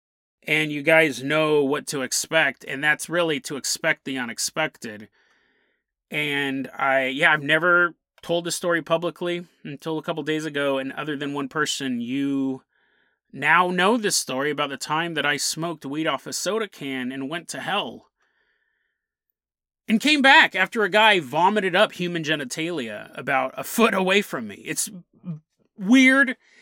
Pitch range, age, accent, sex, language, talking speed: 145-220 Hz, 30-49, American, male, English, 160 wpm